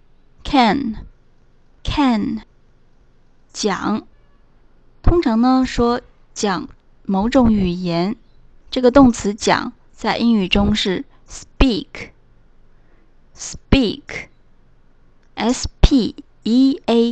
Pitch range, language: 190-260 Hz, Chinese